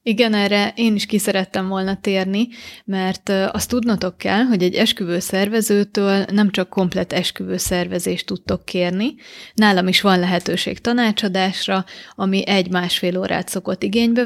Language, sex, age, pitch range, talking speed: Hungarian, female, 30-49, 185-220 Hz, 125 wpm